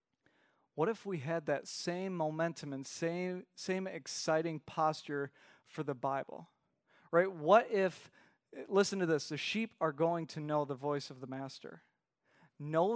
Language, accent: English, American